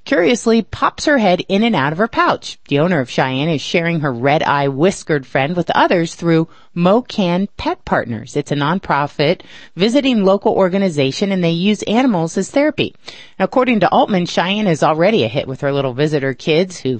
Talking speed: 180 wpm